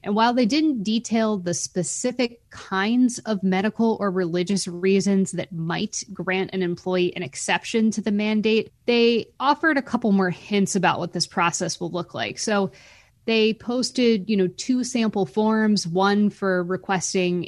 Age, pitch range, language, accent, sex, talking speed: 20-39, 180-210 Hz, English, American, female, 160 wpm